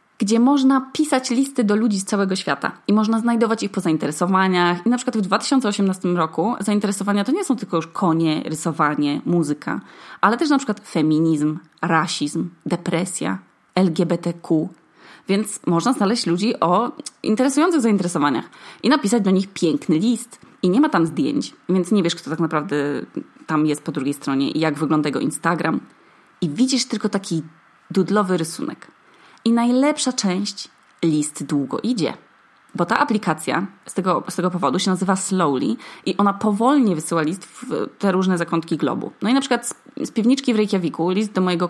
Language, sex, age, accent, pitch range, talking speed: Polish, female, 20-39, native, 160-220 Hz, 170 wpm